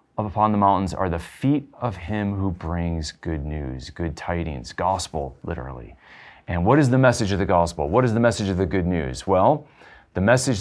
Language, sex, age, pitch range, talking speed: English, male, 30-49, 90-110 Hz, 200 wpm